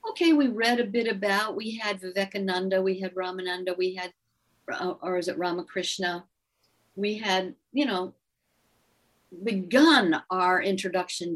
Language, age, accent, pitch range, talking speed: English, 50-69, American, 180-275 Hz, 130 wpm